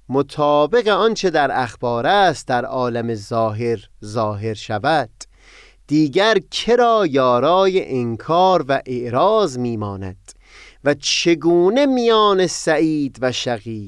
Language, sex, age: Persian, male, 30-49